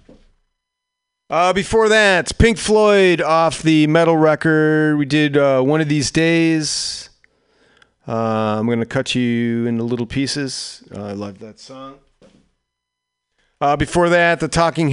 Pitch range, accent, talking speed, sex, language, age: 125-165 Hz, American, 135 wpm, male, English, 40-59